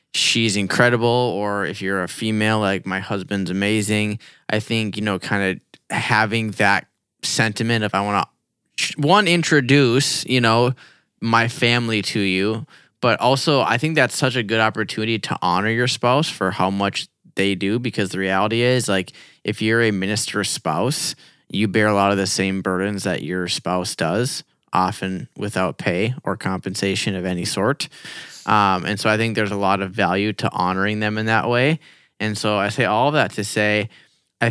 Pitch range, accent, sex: 100-135 Hz, American, male